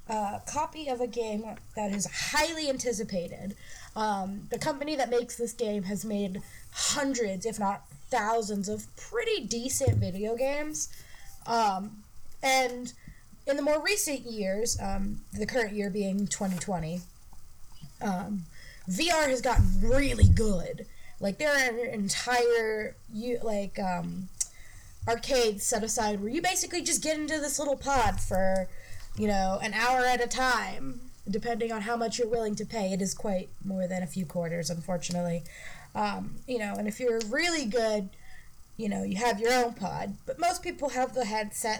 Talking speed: 160 wpm